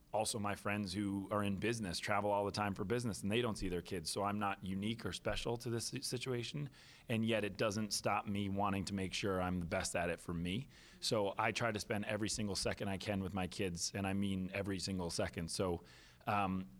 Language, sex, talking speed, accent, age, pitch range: English, male, 235 wpm, American, 30-49, 90-105 Hz